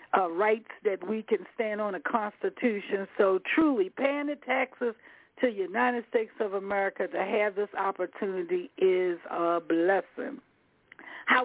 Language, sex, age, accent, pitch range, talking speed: English, female, 60-79, American, 210-270 Hz, 145 wpm